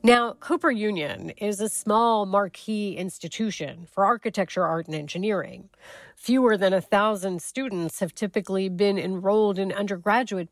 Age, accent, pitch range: 40-59, American, 180-230 Hz